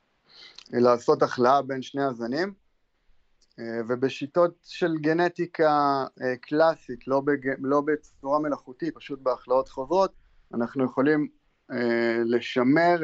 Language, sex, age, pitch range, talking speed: Hebrew, male, 30-49, 115-145 Hz, 95 wpm